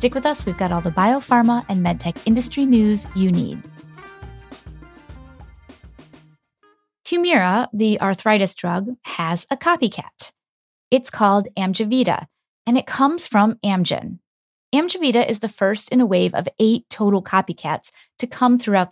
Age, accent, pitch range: 30-49, American, 190-250 Hz